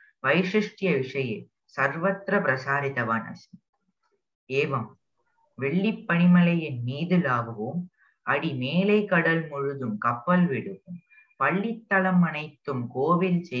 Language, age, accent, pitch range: Hindi, 20-39, native, 130-185 Hz